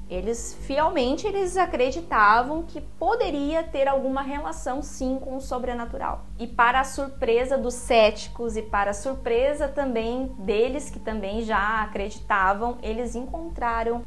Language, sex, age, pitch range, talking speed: Portuguese, female, 20-39, 220-275 Hz, 125 wpm